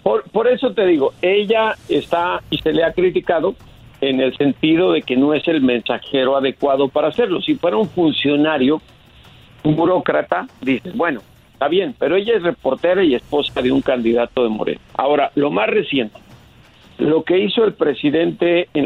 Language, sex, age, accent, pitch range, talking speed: Spanish, male, 50-69, Mexican, 140-195 Hz, 175 wpm